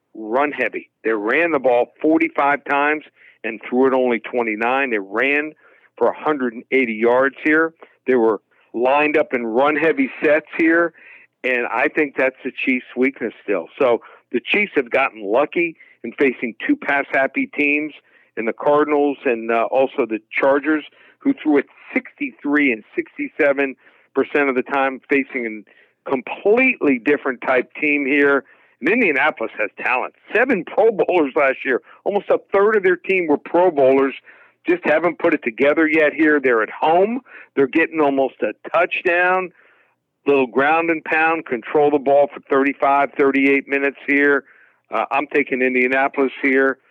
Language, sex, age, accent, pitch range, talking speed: English, male, 50-69, American, 135-170 Hz, 150 wpm